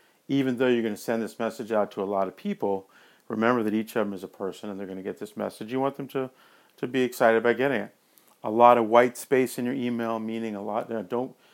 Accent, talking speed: American, 275 wpm